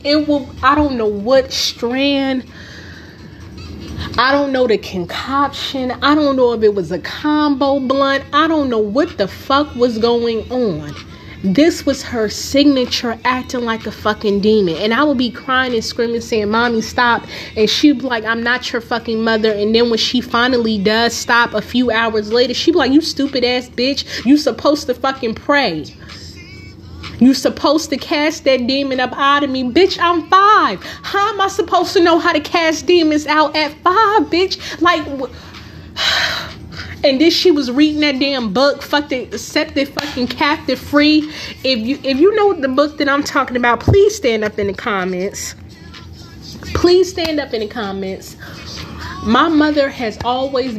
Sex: female